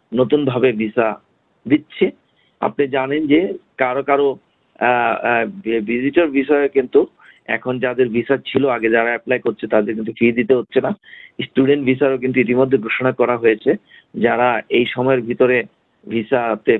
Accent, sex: native, male